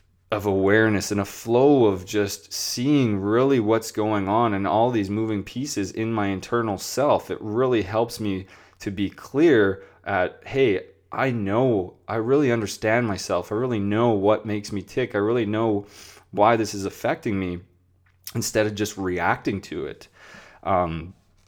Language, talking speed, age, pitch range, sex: English, 160 wpm, 20-39, 95-110 Hz, male